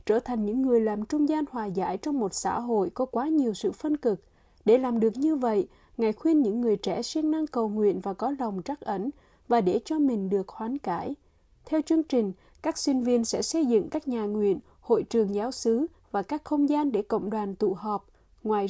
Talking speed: 230 wpm